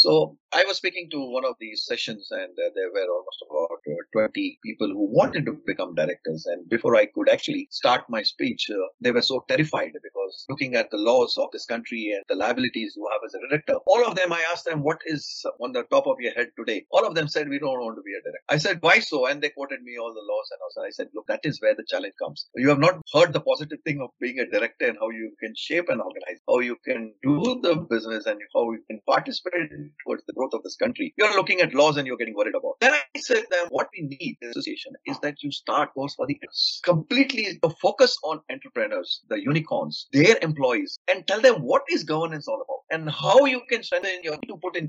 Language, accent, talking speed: English, Indian, 250 wpm